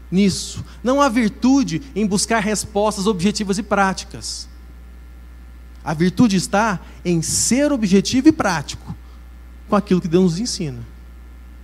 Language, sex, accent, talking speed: Portuguese, male, Brazilian, 125 wpm